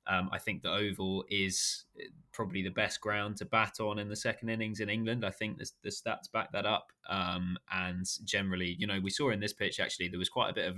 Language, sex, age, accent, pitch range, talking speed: English, male, 20-39, British, 95-110 Hz, 245 wpm